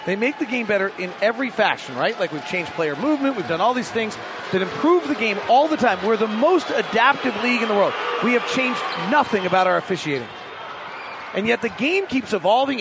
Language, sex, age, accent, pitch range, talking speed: English, male, 30-49, American, 185-245 Hz, 220 wpm